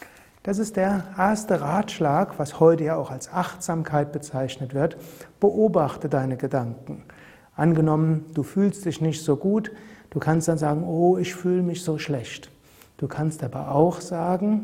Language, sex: German, male